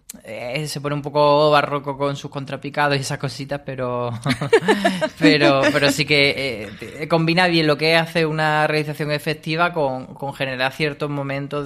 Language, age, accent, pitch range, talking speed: Spanish, 20-39, Spanish, 135-160 Hz, 160 wpm